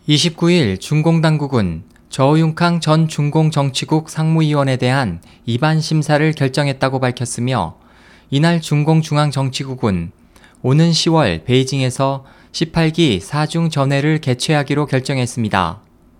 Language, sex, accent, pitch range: Korean, male, native, 125-160 Hz